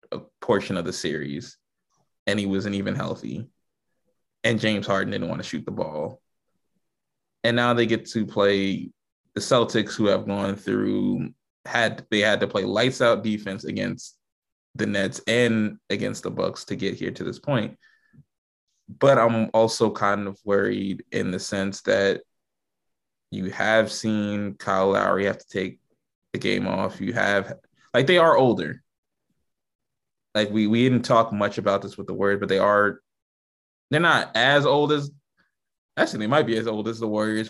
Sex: male